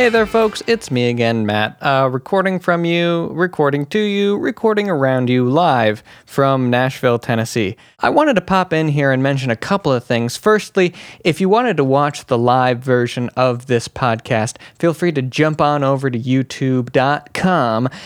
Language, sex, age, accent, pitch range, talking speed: English, male, 20-39, American, 120-170 Hz, 175 wpm